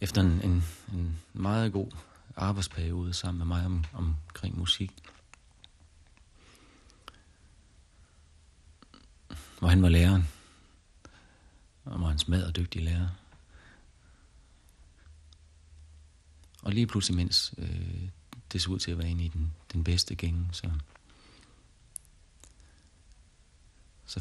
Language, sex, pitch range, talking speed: Danish, male, 80-90 Hz, 110 wpm